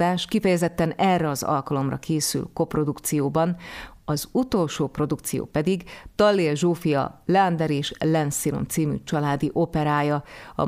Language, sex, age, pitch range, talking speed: Hungarian, female, 30-49, 150-170 Hz, 105 wpm